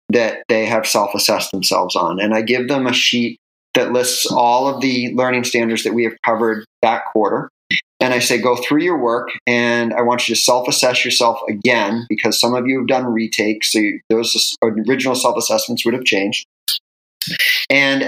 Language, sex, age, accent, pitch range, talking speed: English, male, 30-49, American, 110-125 Hz, 190 wpm